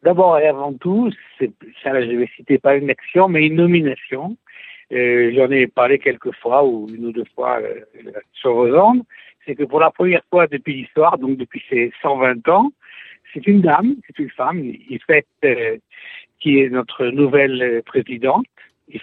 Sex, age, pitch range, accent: male, 60-79, 125-180 Hz, French